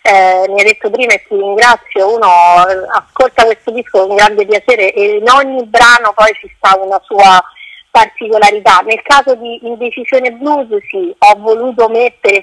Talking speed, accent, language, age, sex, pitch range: 170 wpm, native, Italian, 30-49, female, 210-265 Hz